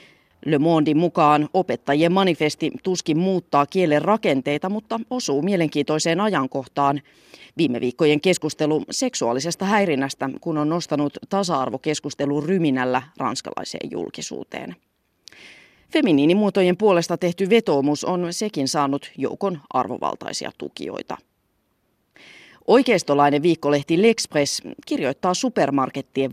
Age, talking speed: 30-49, 95 wpm